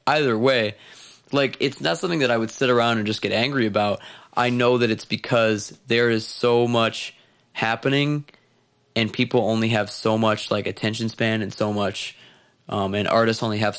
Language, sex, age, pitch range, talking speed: English, male, 20-39, 105-115 Hz, 185 wpm